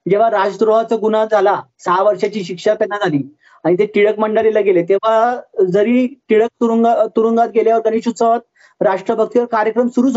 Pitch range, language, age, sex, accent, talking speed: 200-230 Hz, Marathi, 30-49, male, native, 150 wpm